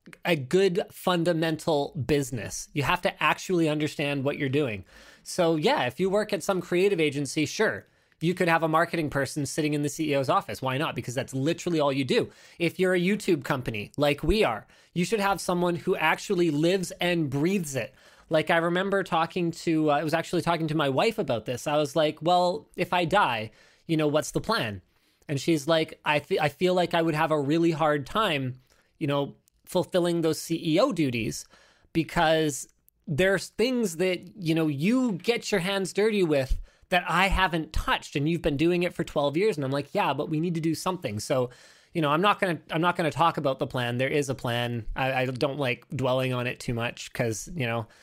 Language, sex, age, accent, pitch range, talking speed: English, male, 20-39, American, 135-175 Hz, 210 wpm